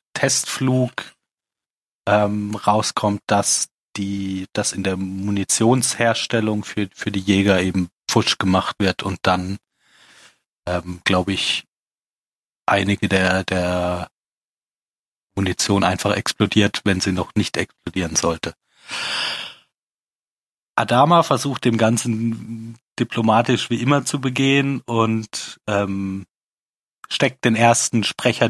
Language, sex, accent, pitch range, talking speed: German, male, German, 95-115 Hz, 105 wpm